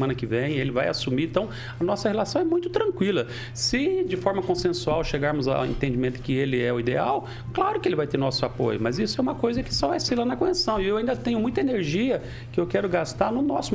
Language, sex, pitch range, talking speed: Portuguese, male, 120-190 Hz, 245 wpm